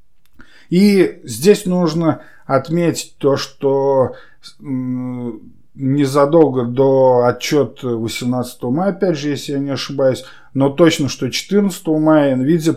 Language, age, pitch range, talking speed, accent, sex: Russian, 20-39, 125-150 Hz, 110 wpm, native, male